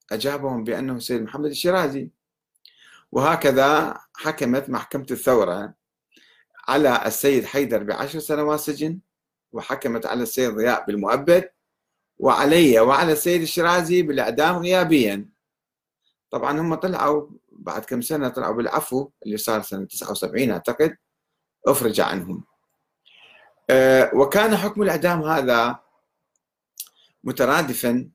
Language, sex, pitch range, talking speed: Arabic, male, 120-165 Hz, 100 wpm